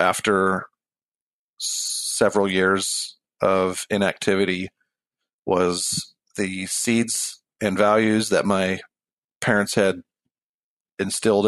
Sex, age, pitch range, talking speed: male, 40-59, 95-110 Hz, 80 wpm